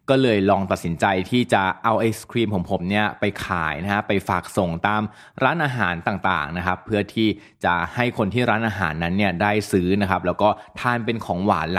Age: 20-39